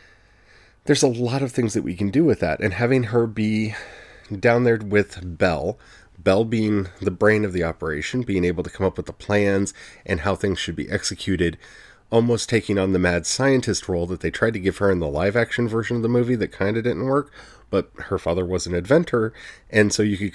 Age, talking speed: 30-49, 220 wpm